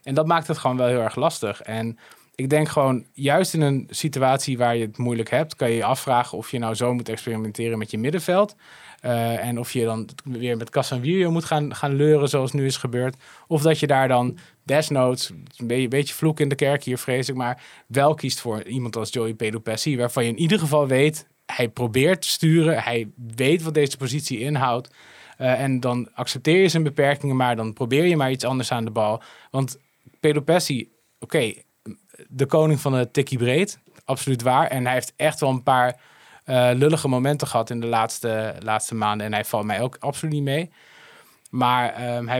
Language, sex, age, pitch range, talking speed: Dutch, male, 20-39, 115-145 Hz, 205 wpm